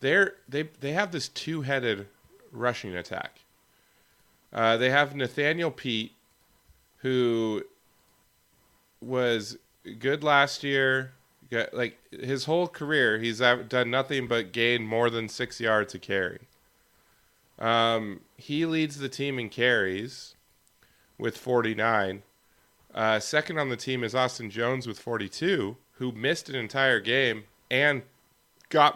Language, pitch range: English, 110-135 Hz